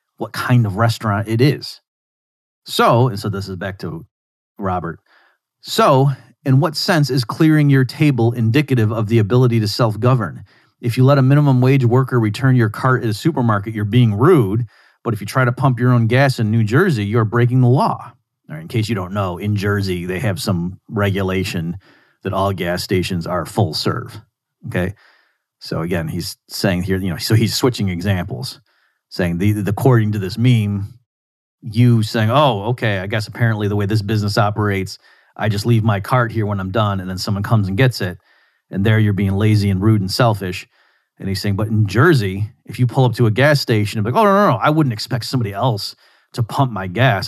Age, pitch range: 40-59, 100-125 Hz